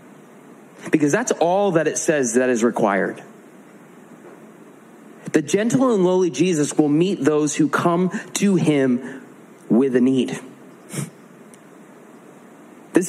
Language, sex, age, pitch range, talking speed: English, male, 30-49, 120-170 Hz, 115 wpm